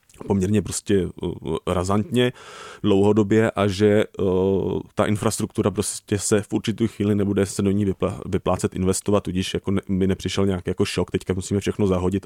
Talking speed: 160 wpm